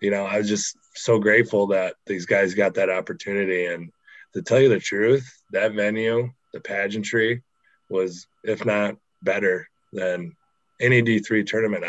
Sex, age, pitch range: male, 20-39, 95-120 Hz